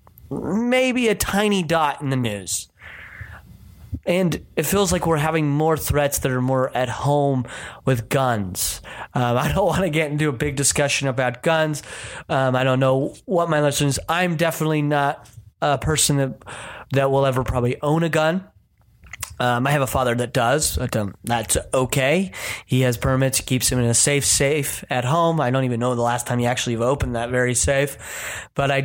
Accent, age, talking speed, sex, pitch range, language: American, 30-49, 190 wpm, male, 125-155 Hz, English